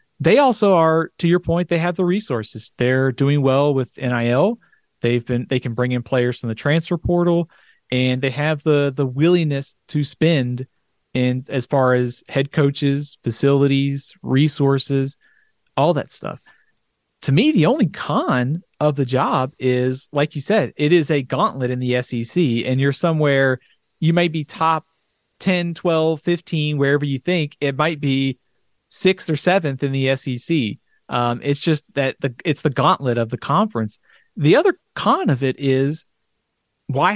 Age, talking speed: 30-49, 170 wpm